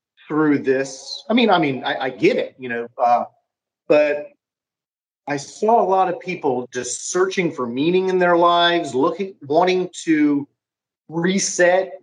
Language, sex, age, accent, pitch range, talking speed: English, male, 40-59, American, 130-185 Hz, 155 wpm